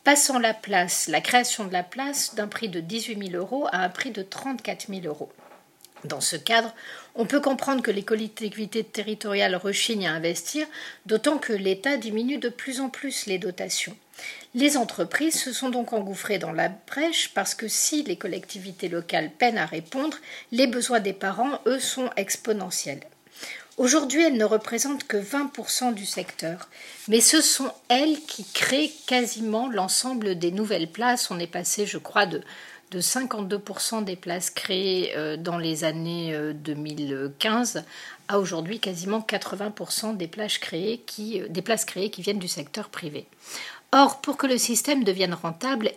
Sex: female